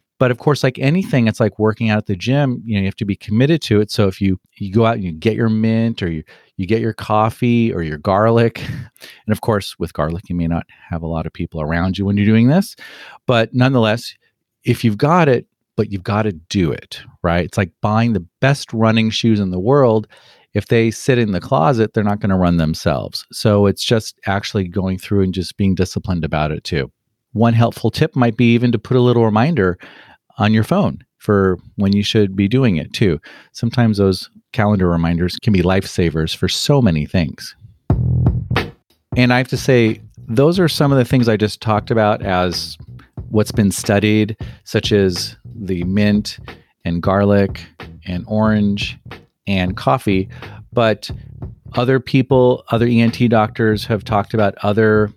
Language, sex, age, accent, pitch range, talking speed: English, male, 40-59, American, 95-120 Hz, 195 wpm